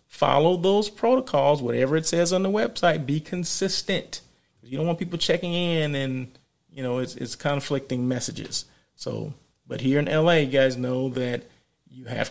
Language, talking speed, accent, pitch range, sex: English, 170 wpm, American, 125-165 Hz, male